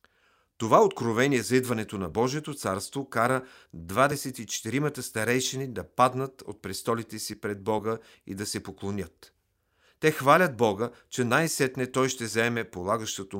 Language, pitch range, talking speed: Bulgarian, 100-130 Hz, 135 wpm